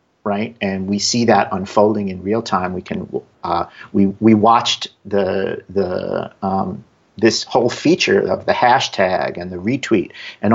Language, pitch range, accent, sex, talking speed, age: English, 95-115 Hz, American, male, 160 wpm, 50-69